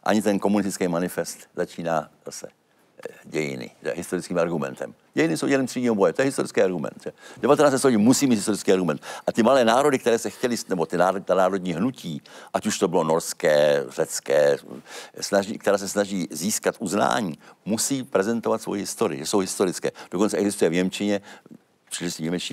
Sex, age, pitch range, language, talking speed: male, 70-89, 85-110 Hz, Czech, 160 wpm